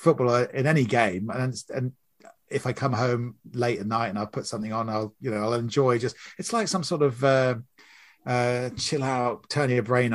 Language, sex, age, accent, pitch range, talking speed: English, male, 30-49, British, 100-125 Hz, 215 wpm